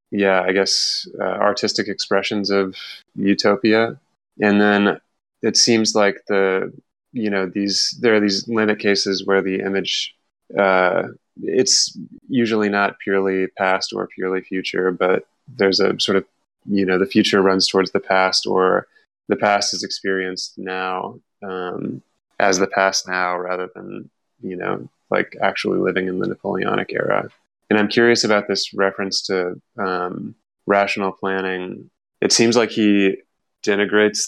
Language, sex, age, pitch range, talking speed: English, male, 20-39, 95-105 Hz, 145 wpm